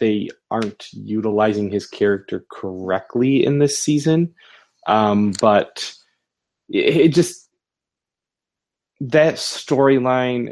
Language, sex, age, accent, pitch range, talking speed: English, male, 20-39, American, 100-115 Hz, 85 wpm